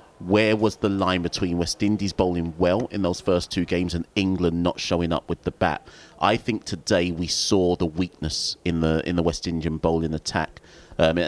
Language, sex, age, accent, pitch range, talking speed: English, male, 30-49, British, 85-95 Hz, 200 wpm